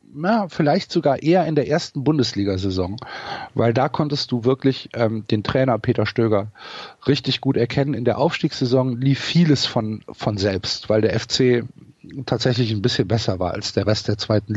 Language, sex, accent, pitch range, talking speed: German, male, German, 110-140 Hz, 175 wpm